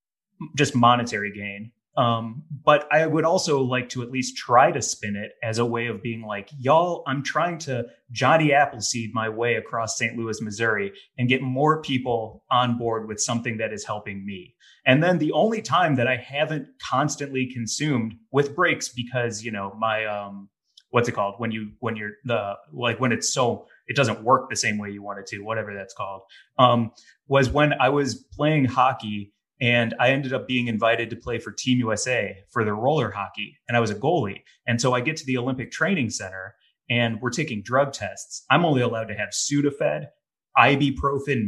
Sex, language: male, English